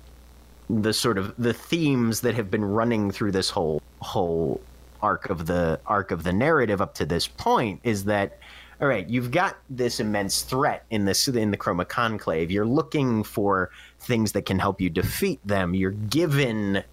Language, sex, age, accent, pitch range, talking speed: English, male, 30-49, American, 90-115 Hz, 180 wpm